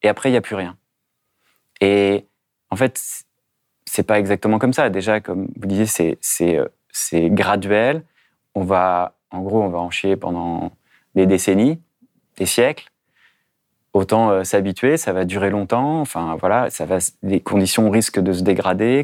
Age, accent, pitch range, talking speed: 30-49, French, 95-115 Hz, 165 wpm